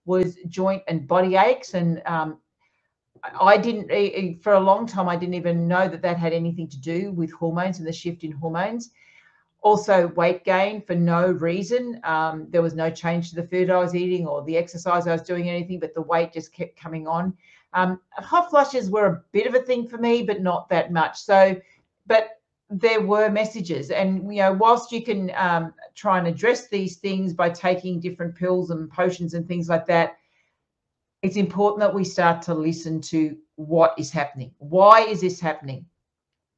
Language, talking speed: English, 195 wpm